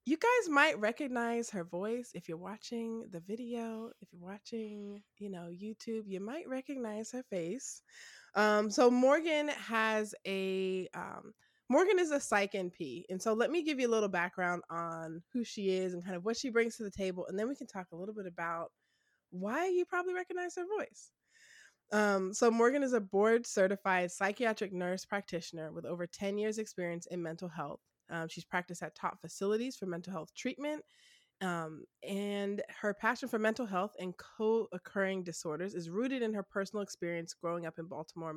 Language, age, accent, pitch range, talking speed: English, 20-39, American, 180-230 Hz, 185 wpm